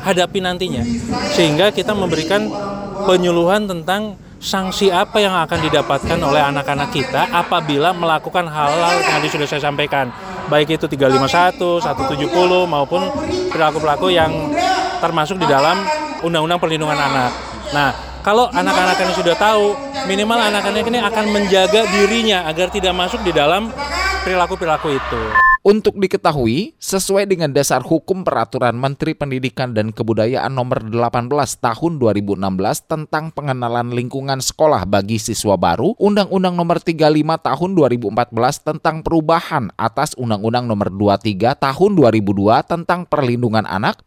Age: 20-39